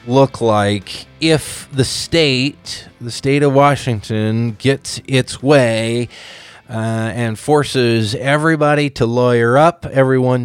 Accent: American